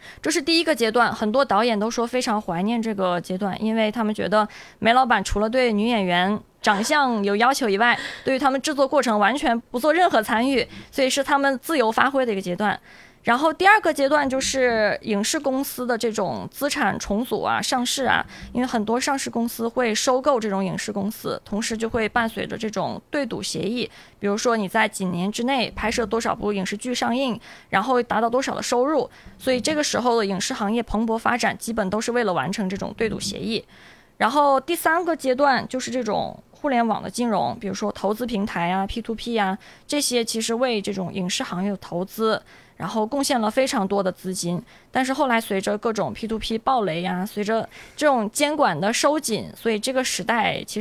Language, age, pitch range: Chinese, 20-39, 210-260 Hz